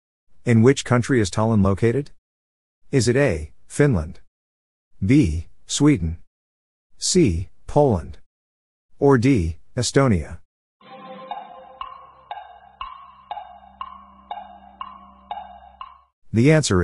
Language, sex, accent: English, male, American